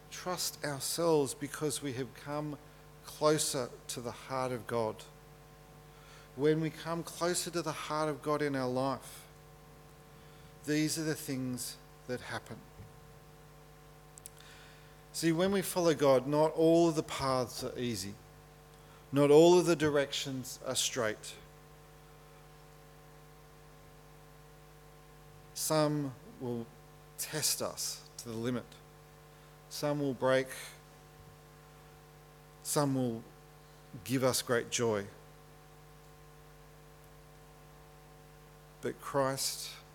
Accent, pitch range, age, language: Australian, 140-150 Hz, 40-59, English